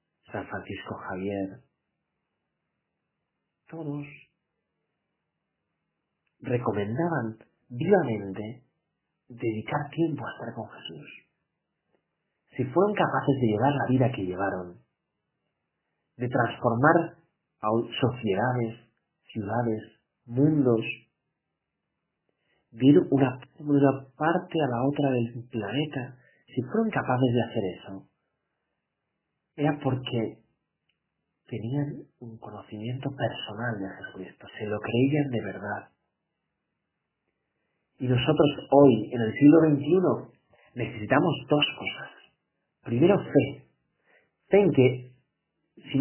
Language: Spanish